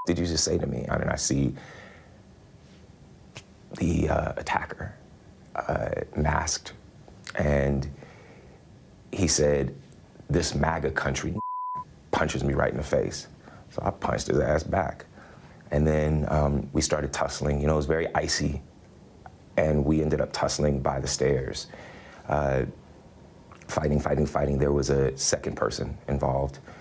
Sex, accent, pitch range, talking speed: male, American, 70-75 Hz, 140 wpm